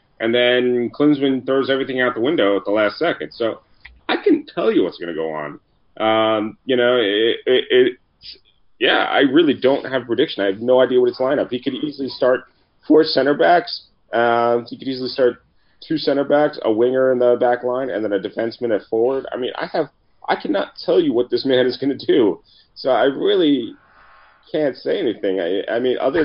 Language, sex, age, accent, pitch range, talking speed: English, male, 30-49, American, 105-135 Hz, 215 wpm